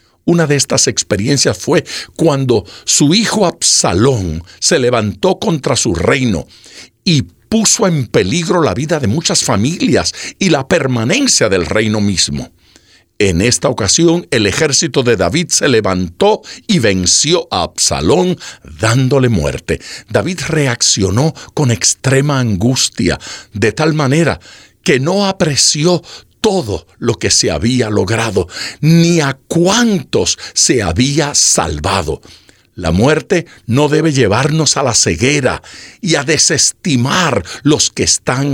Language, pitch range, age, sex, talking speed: Spanish, 105-165 Hz, 60-79, male, 125 wpm